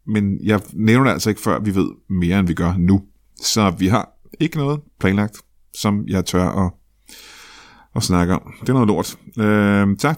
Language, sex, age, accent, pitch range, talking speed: Danish, male, 30-49, native, 95-120 Hz, 195 wpm